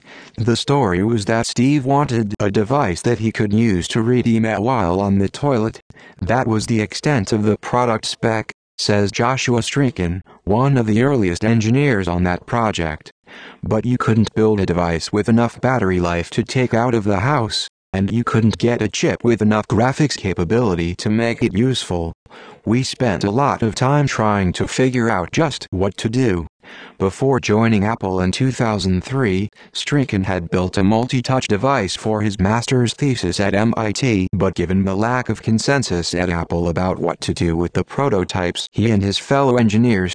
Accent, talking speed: American, 180 wpm